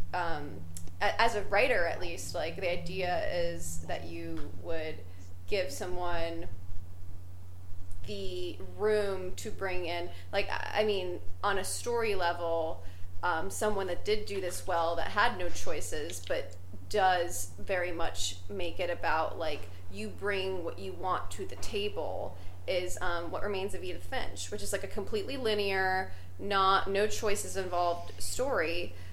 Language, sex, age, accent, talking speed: English, female, 20-39, American, 150 wpm